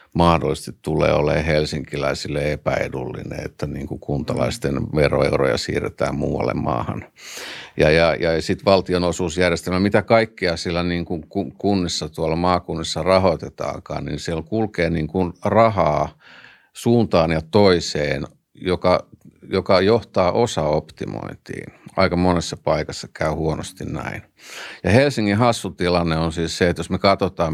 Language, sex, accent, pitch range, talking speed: Finnish, male, native, 80-95 Hz, 120 wpm